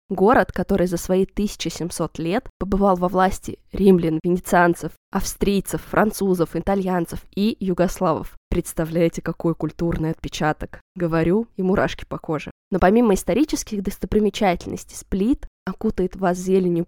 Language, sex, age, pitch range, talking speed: Russian, female, 20-39, 170-200 Hz, 115 wpm